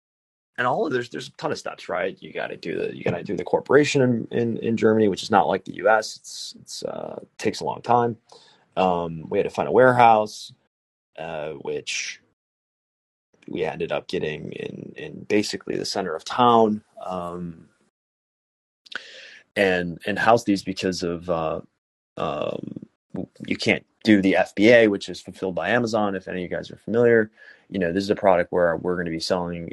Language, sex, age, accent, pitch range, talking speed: English, male, 30-49, American, 90-120 Hz, 195 wpm